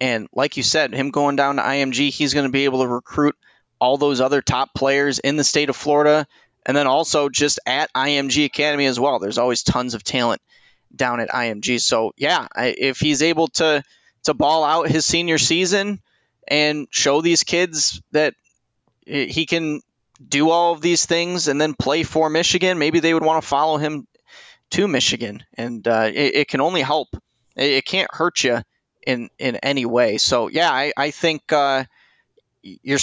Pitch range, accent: 135-160 Hz, American